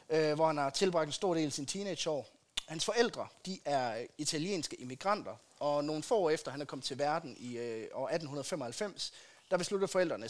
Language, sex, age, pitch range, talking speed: Danish, male, 30-49, 135-180 Hz, 200 wpm